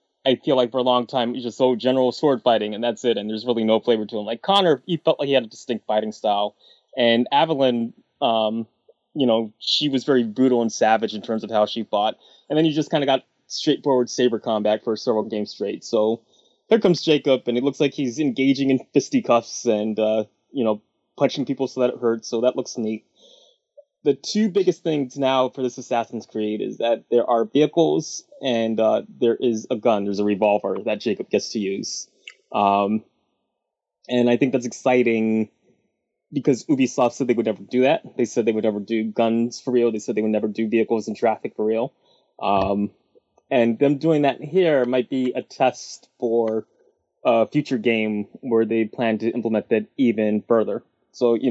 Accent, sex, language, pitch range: American, male, English, 110-130 Hz